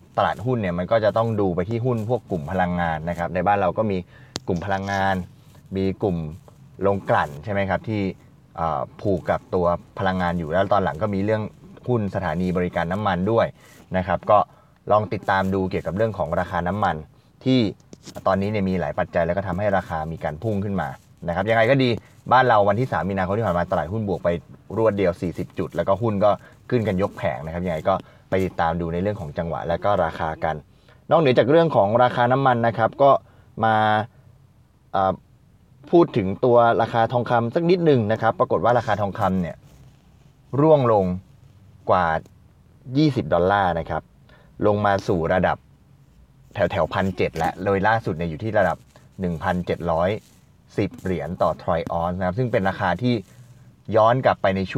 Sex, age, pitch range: male, 20-39, 95-120 Hz